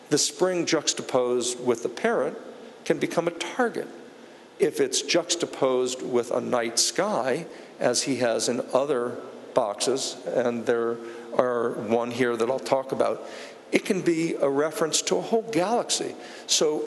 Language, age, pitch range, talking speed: English, 50-69, 125-175 Hz, 150 wpm